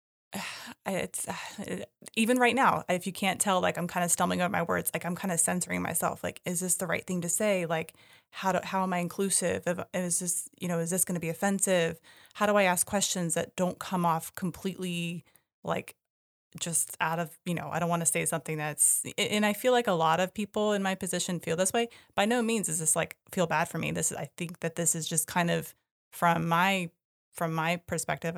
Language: English